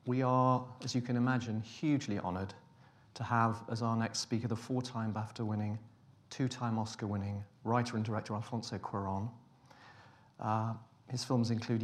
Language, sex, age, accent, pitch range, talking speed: English, male, 40-59, British, 115-130 Hz, 140 wpm